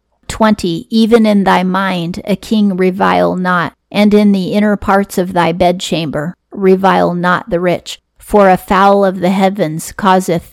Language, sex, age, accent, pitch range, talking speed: English, female, 40-59, American, 175-200 Hz, 160 wpm